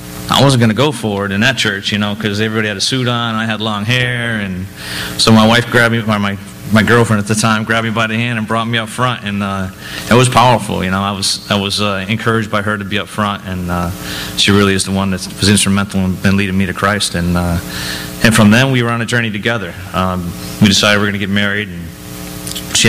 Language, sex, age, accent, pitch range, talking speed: English, male, 30-49, American, 90-115 Hz, 265 wpm